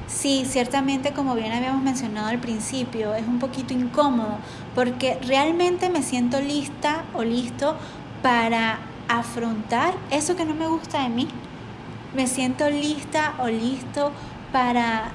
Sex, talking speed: female, 135 wpm